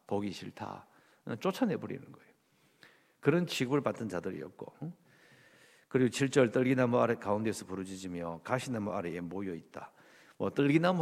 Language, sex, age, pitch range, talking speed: English, male, 50-69, 110-165 Hz, 110 wpm